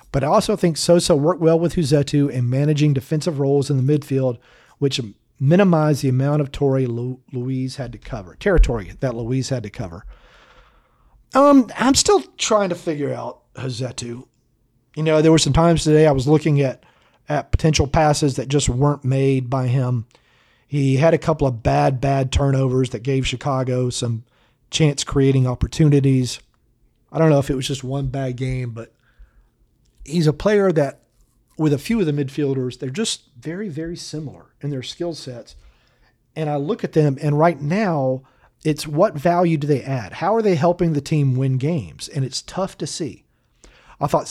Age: 40-59